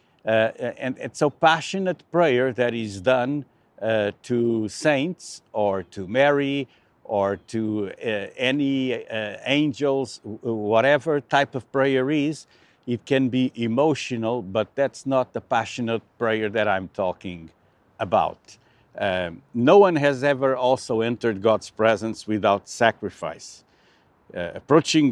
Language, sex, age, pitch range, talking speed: English, male, 60-79, 110-140 Hz, 125 wpm